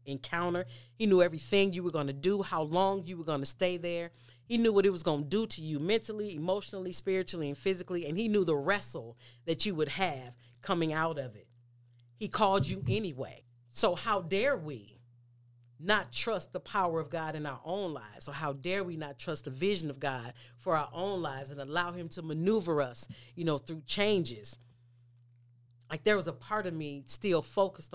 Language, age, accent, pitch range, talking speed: English, 40-59, American, 125-185 Hz, 205 wpm